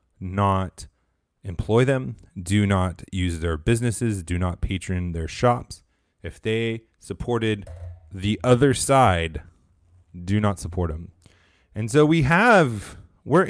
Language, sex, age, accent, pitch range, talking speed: English, male, 30-49, American, 90-115 Hz, 125 wpm